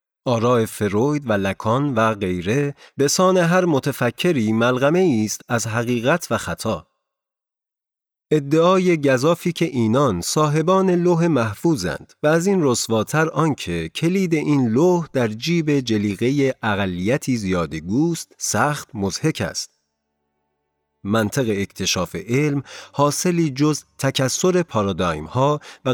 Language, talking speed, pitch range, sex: Persian, 110 wpm, 100-150 Hz, male